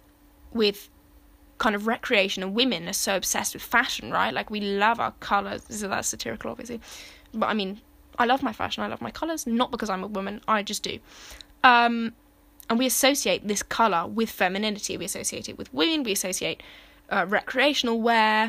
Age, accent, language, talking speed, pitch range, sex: 10-29, British, English, 185 wpm, 195-235 Hz, female